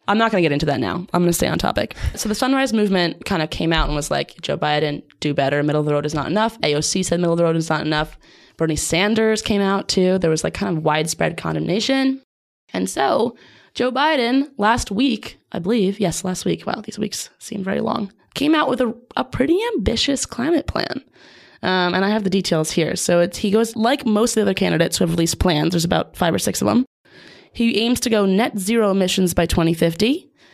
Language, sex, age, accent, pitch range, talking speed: English, female, 20-39, American, 160-225 Hz, 235 wpm